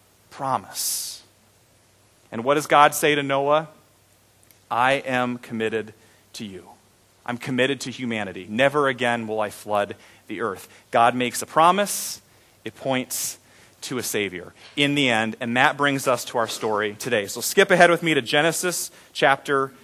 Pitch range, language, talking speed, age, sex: 115-170 Hz, English, 155 wpm, 30-49, male